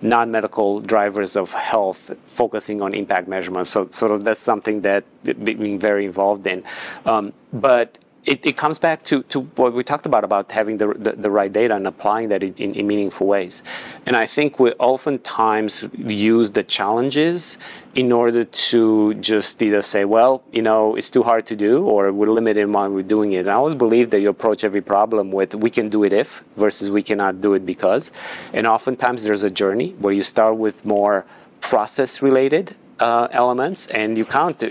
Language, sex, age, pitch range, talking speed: English, male, 30-49, 105-120 Hz, 190 wpm